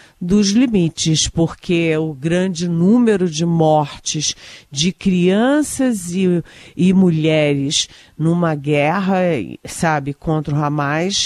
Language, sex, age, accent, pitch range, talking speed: Portuguese, female, 50-69, Brazilian, 155-200 Hz, 100 wpm